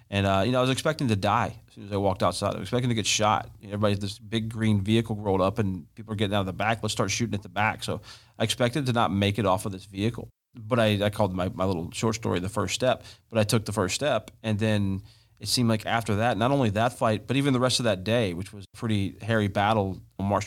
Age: 30-49